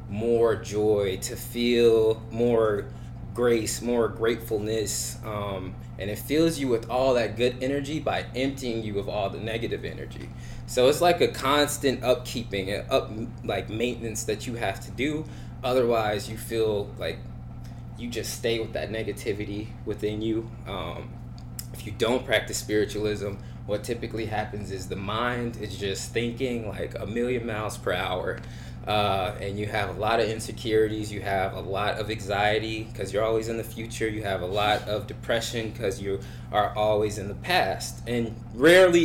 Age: 20-39